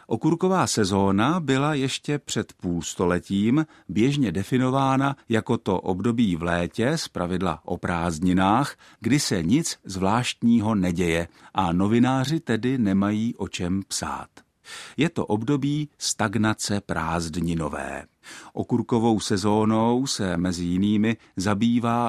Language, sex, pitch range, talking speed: Czech, male, 95-120 Hz, 110 wpm